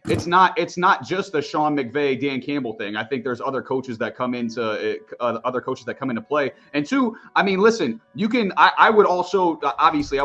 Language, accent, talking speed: English, American, 230 wpm